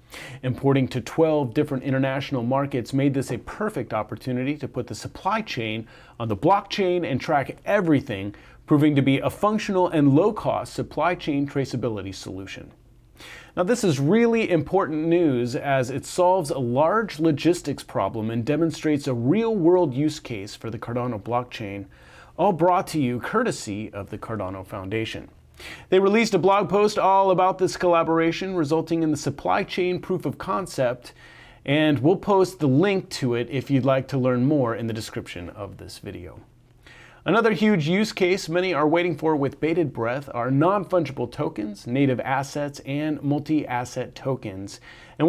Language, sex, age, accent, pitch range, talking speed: English, male, 30-49, American, 120-170 Hz, 160 wpm